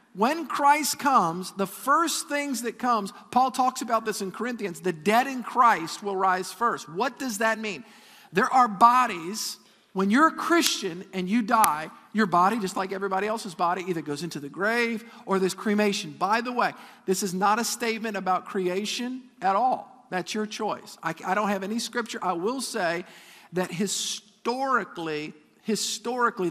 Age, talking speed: 50-69, 175 wpm